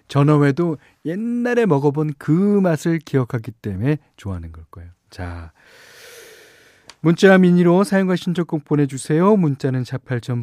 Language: Korean